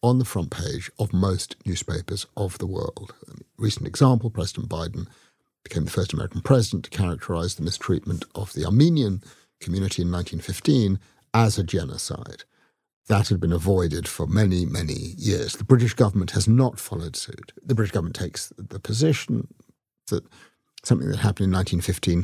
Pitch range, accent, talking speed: 90-120 Hz, British, 160 wpm